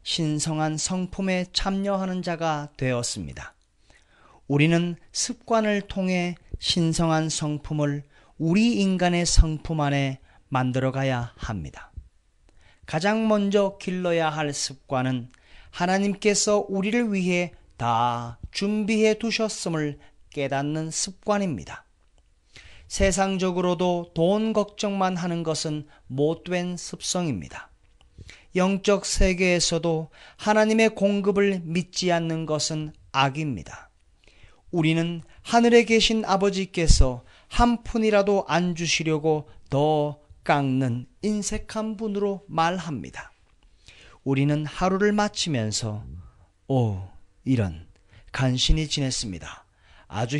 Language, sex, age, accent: Korean, male, 40-59, native